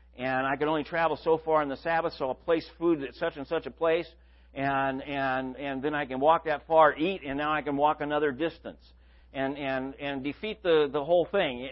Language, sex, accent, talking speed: English, male, American, 230 wpm